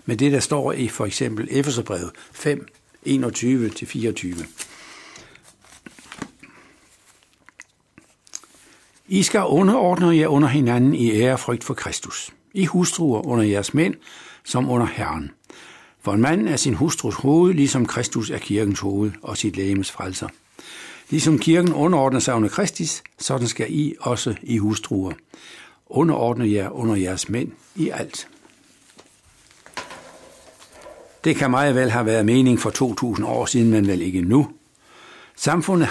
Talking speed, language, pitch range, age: 135 wpm, Danish, 110-145 Hz, 60-79